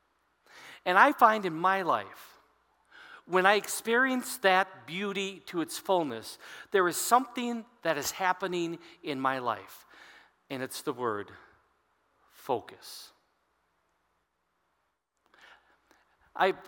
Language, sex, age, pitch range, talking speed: English, male, 50-69, 145-190 Hz, 105 wpm